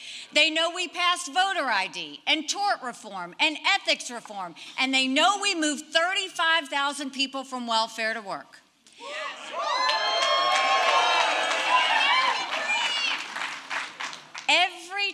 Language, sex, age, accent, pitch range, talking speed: English, female, 50-69, American, 245-350 Hz, 95 wpm